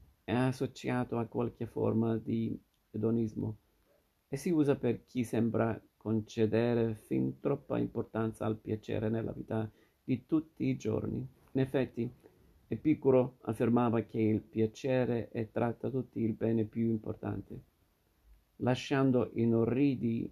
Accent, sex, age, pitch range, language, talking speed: native, male, 50-69, 110-125 Hz, Italian, 120 wpm